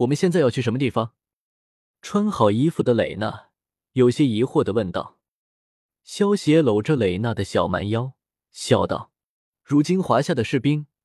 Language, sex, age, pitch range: Chinese, male, 20-39, 110-165 Hz